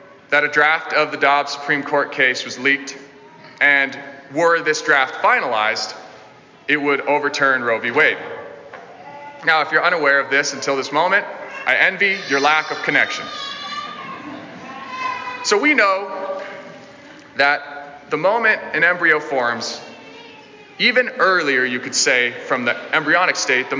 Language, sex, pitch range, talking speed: English, male, 145-200 Hz, 140 wpm